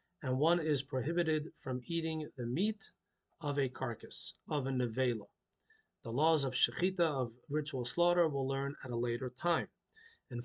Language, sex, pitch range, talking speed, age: English, male, 135-170 Hz, 160 wpm, 40-59